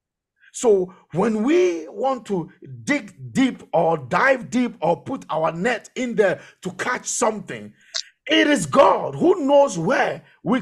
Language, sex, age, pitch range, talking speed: English, male, 50-69, 170-250 Hz, 145 wpm